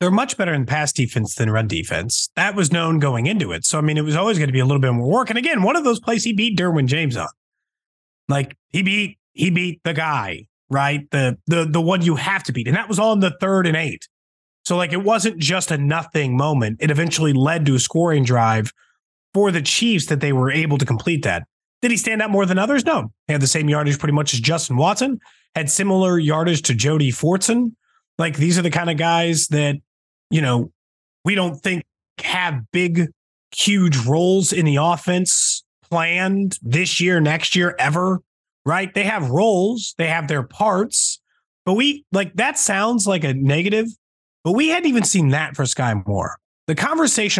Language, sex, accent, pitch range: English, male, American, 140-195 Hz